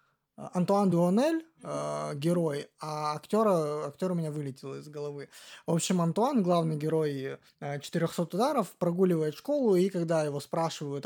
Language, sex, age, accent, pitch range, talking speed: Russian, male, 20-39, native, 150-185 Hz, 125 wpm